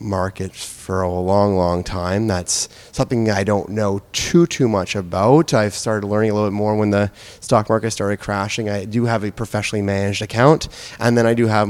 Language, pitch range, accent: English, 95-115 Hz, American